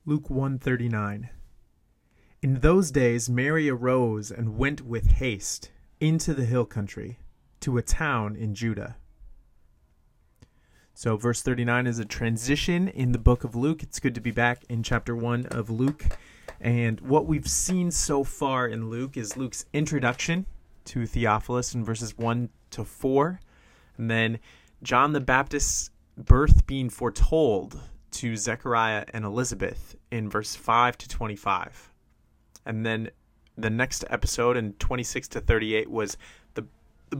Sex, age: male, 30-49